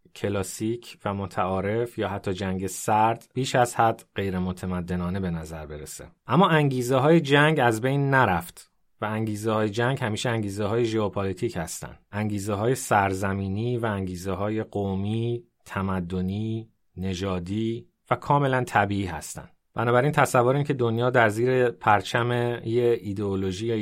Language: Persian